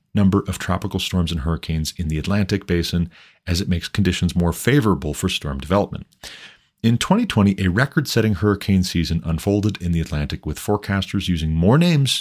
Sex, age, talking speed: male, 40-59, 165 wpm